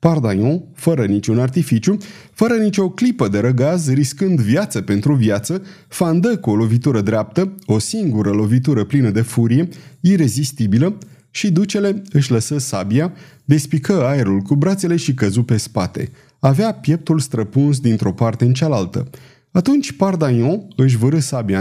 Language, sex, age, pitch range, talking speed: Romanian, male, 30-49, 115-165 Hz, 140 wpm